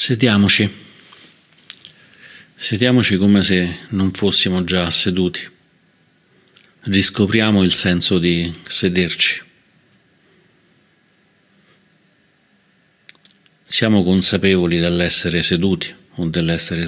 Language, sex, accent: Italian, male, native